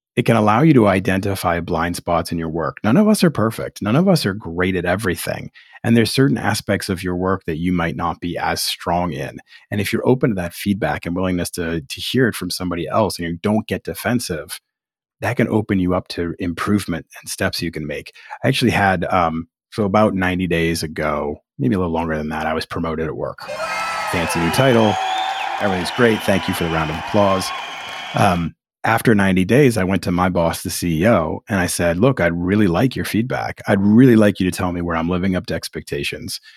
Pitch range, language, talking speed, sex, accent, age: 85-110 Hz, English, 225 wpm, male, American, 30-49